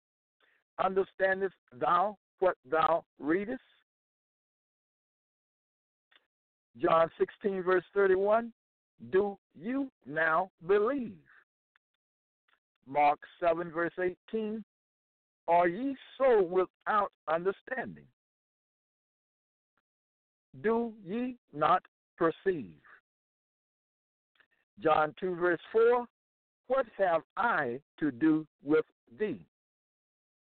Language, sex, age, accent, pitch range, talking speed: English, male, 60-79, American, 160-210 Hz, 75 wpm